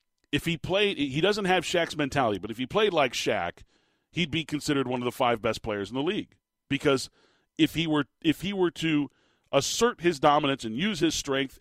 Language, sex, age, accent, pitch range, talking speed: English, male, 40-59, American, 130-170 Hz, 210 wpm